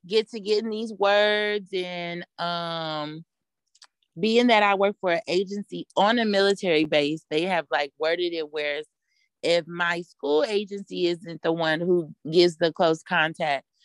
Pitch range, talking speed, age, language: 165-205 Hz, 155 wpm, 30-49, English